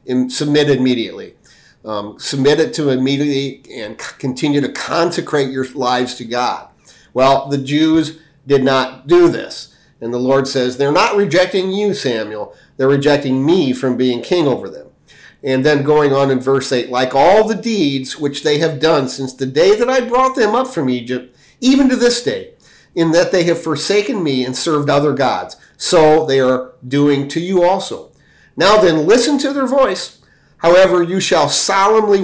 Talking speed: 175 wpm